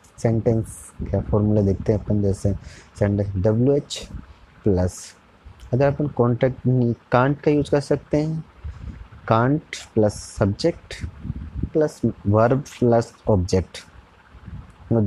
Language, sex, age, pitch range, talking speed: Hindi, male, 30-49, 95-135 Hz, 110 wpm